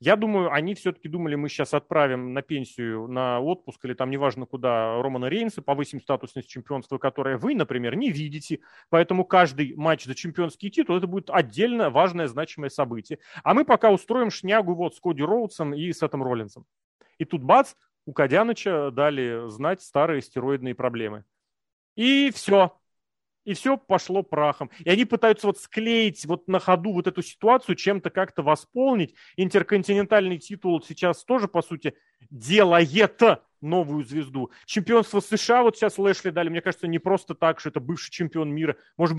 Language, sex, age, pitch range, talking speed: Russian, male, 30-49, 145-205 Hz, 165 wpm